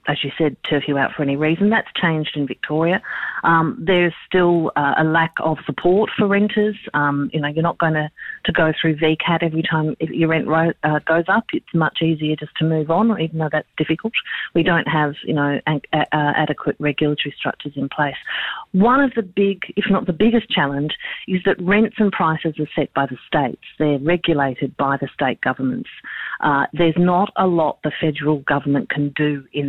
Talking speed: 205 wpm